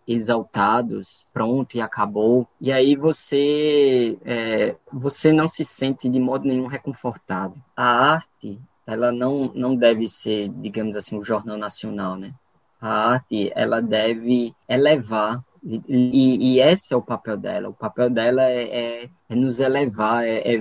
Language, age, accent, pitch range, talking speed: Portuguese, 10-29, Brazilian, 110-140 Hz, 150 wpm